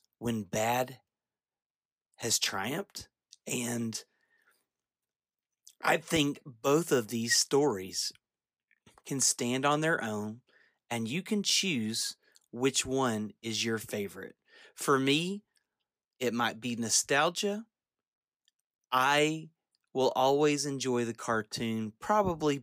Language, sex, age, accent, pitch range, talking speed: English, male, 30-49, American, 110-140 Hz, 100 wpm